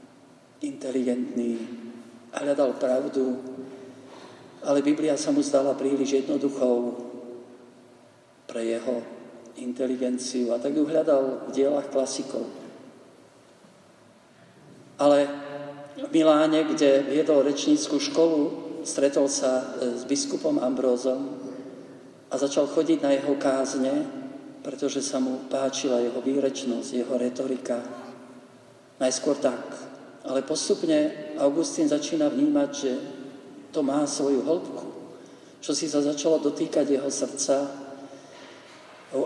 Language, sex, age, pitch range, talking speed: Slovak, male, 50-69, 130-155 Hz, 100 wpm